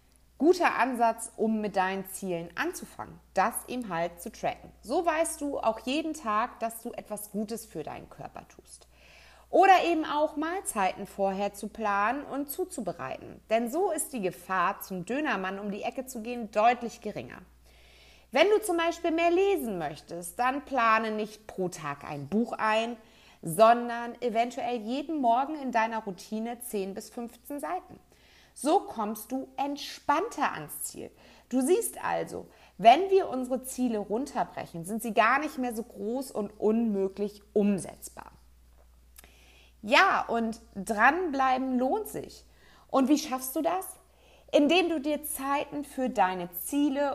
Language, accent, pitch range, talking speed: German, German, 200-285 Hz, 150 wpm